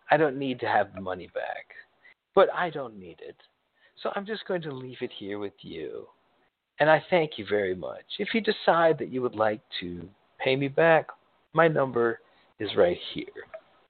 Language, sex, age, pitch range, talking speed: English, male, 50-69, 130-220 Hz, 195 wpm